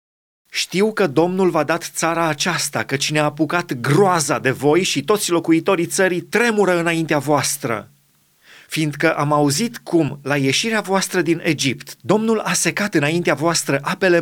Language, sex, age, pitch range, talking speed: Romanian, male, 30-49, 150-180 Hz, 150 wpm